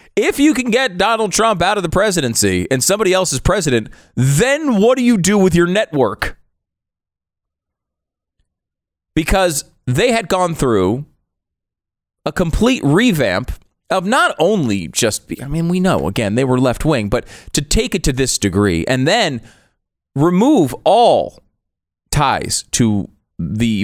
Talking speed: 145 wpm